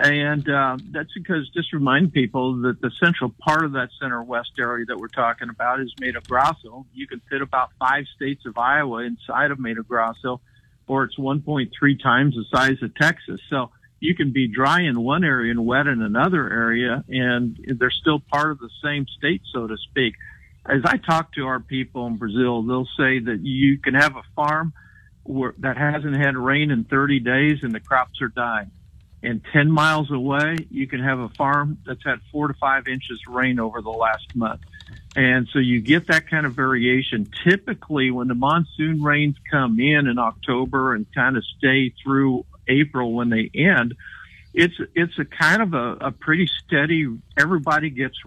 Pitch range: 120-145 Hz